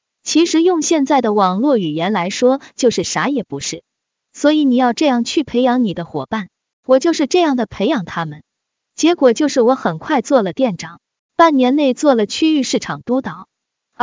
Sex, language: female, Chinese